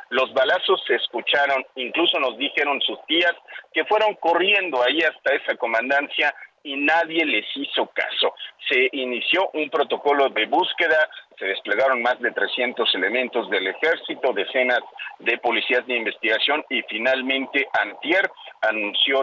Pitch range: 120-170 Hz